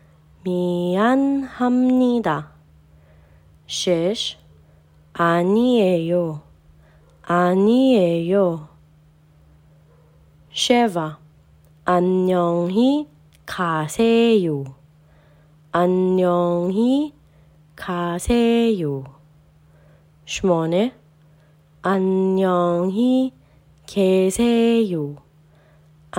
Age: 20-39